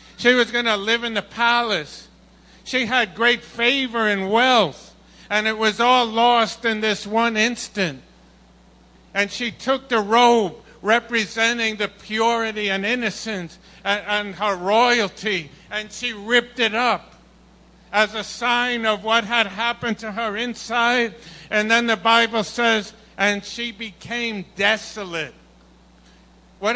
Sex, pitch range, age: male, 210-240 Hz, 50-69